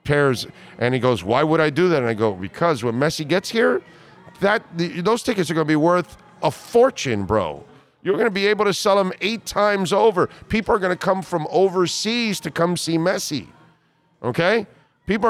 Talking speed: 210 wpm